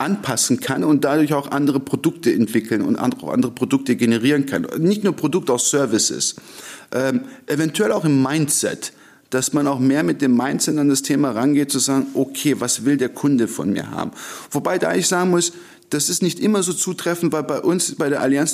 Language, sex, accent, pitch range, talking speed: German, male, German, 135-170 Hz, 200 wpm